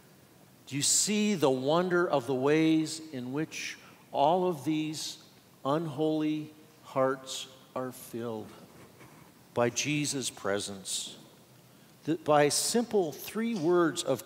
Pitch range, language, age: 135-170 Hz, English, 50-69